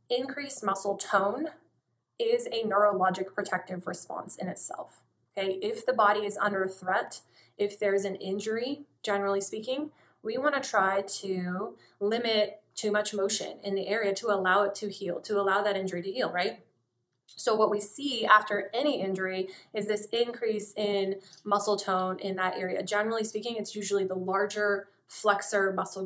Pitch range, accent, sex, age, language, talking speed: 190-215 Hz, American, female, 20-39, English, 165 wpm